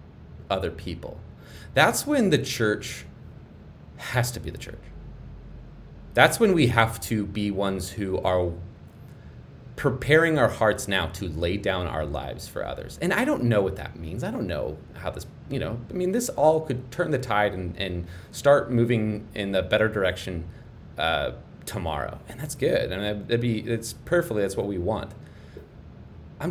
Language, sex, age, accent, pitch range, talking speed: English, male, 30-49, American, 95-130 Hz, 170 wpm